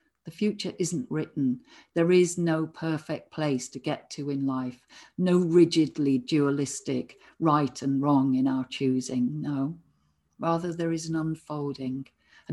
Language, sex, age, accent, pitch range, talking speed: English, female, 50-69, British, 140-180 Hz, 145 wpm